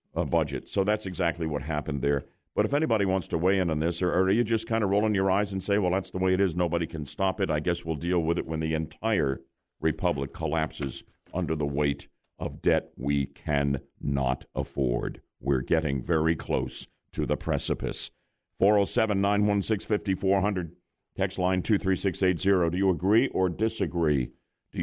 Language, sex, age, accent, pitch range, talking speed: English, male, 60-79, American, 85-130 Hz, 215 wpm